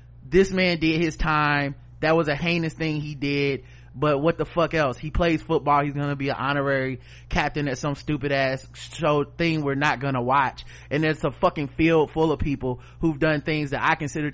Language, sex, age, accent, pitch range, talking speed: English, male, 30-49, American, 125-160 Hz, 210 wpm